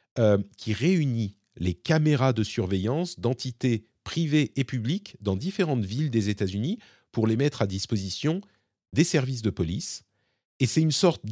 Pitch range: 100-140 Hz